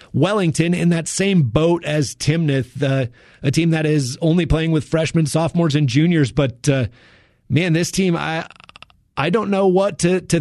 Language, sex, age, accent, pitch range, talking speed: English, male, 30-49, American, 145-175 Hz, 180 wpm